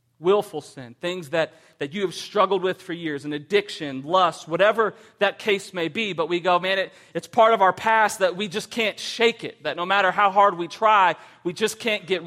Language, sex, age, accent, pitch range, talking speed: English, male, 40-59, American, 170-215 Hz, 220 wpm